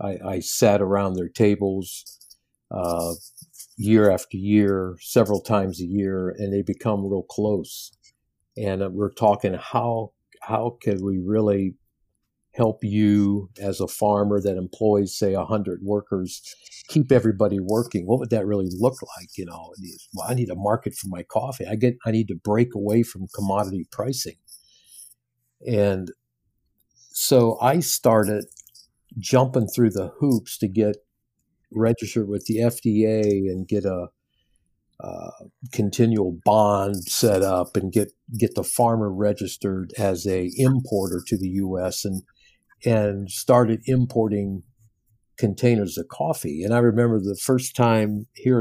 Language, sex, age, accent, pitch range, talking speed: English, male, 50-69, American, 95-115 Hz, 140 wpm